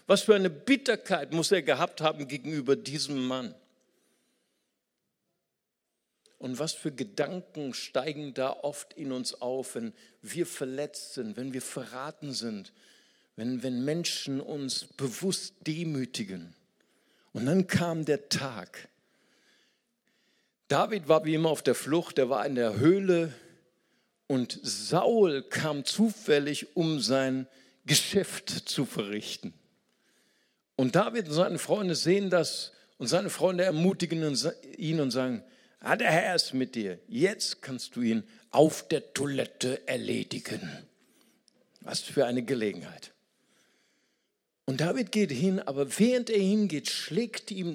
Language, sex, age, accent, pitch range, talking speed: German, male, 60-79, German, 130-180 Hz, 130 wpm